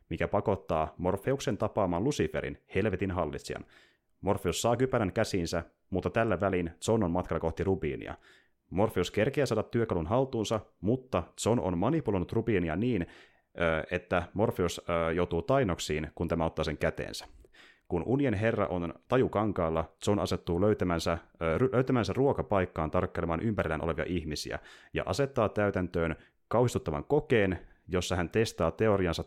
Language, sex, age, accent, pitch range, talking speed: Finnish, male, 30-49, native, 80-105 Hz, 125 wpm